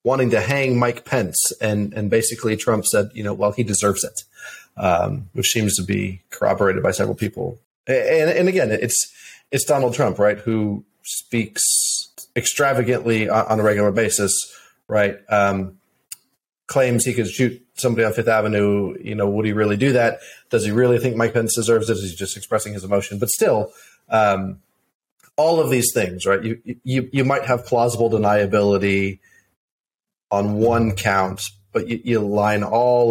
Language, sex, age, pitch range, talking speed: English, male, 30-49, 100-125 Hz, 170 wpm